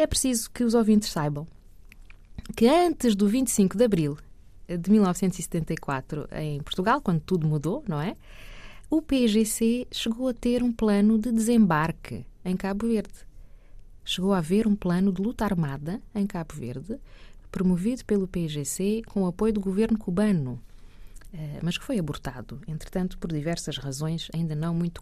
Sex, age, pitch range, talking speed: female, 20-39, 155-215 Hz, 155 wpm